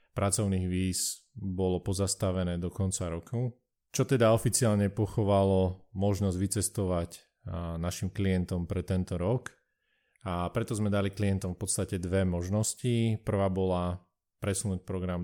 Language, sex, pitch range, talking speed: Slovak, male, 90-105 Hz, 120 wpm